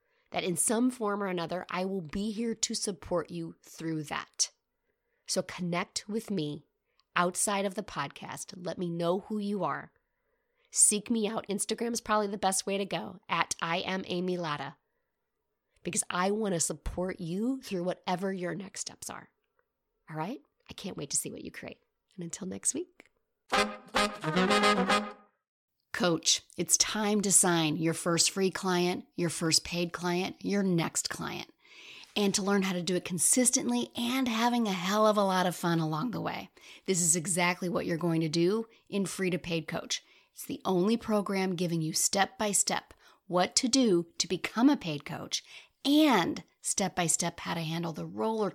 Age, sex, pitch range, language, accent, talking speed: 30-49, female, 175-220 Hz, English, American, 175 wpm